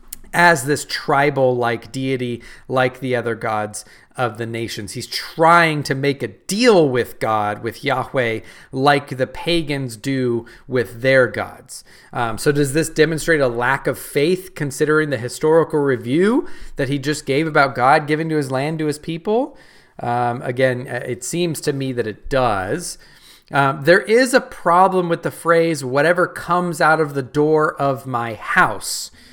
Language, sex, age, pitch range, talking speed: English, male, 30-49, 125-165 Hz, 165 wpm